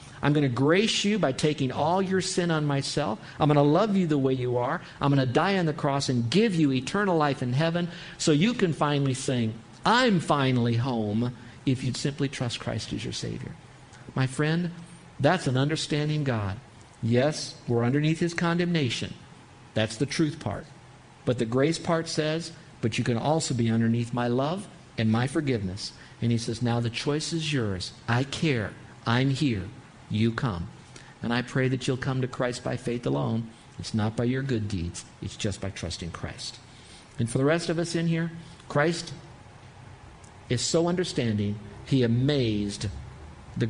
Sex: male